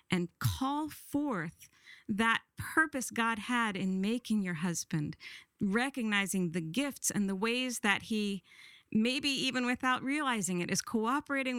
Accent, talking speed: American, 135 wpm